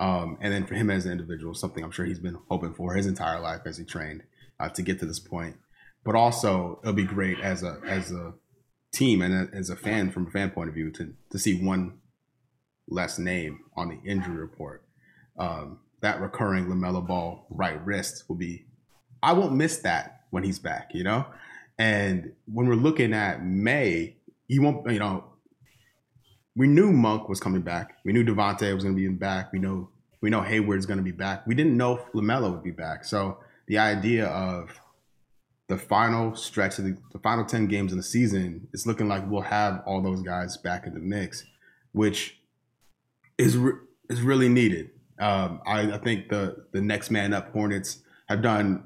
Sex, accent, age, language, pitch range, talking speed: male, American, 30-49, English, 90-110 Hz, 200 wpm